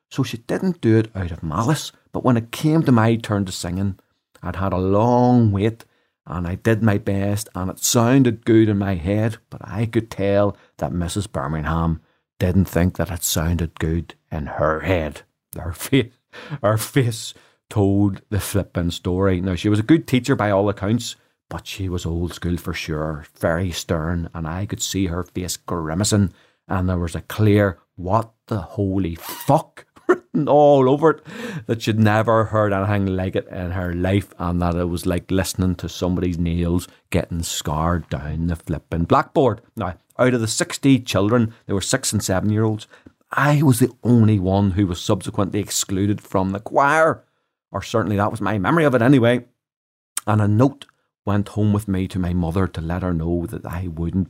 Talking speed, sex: 190 wpm, male